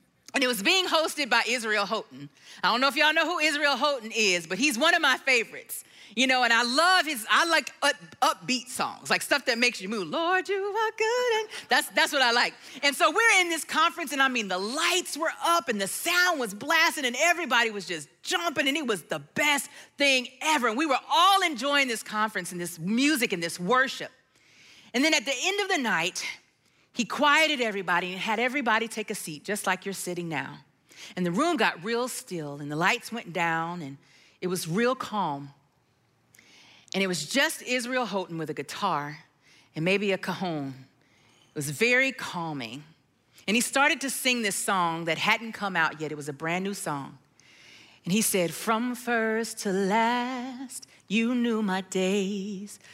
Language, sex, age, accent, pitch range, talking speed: English, female, 40-59, American, 185-270 Hz, 200 wpm